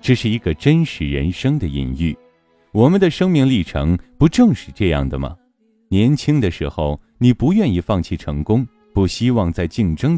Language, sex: Chinese, male